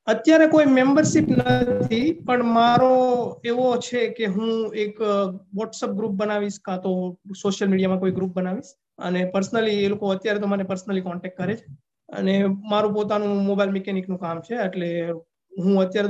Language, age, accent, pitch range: Gujarati, 20-39, native, 185-210 Hz